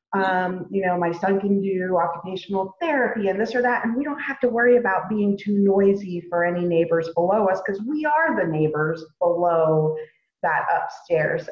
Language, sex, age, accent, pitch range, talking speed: English, female, 30-49, American, 170-215 Hz, 190 wpm